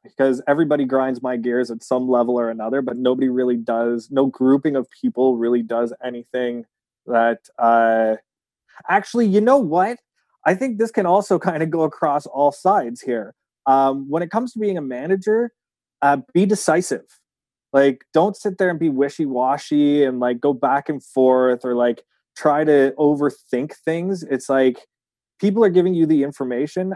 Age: 20-39